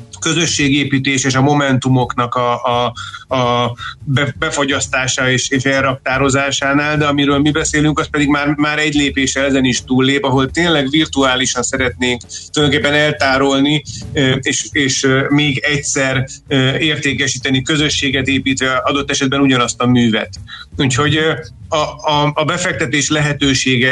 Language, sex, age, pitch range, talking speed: Hungarian, male, 30-49, 130-150 Hz, 120 wpm